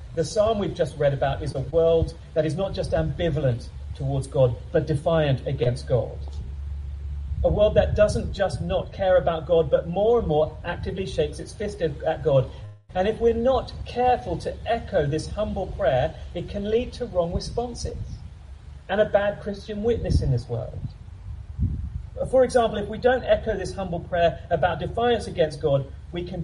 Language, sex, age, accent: English, male, 40-59, British